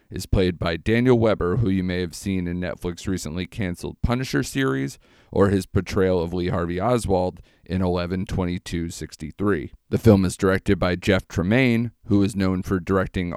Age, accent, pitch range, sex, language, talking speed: 40-59, American, 90-110 Hz, male, English, 170 wpm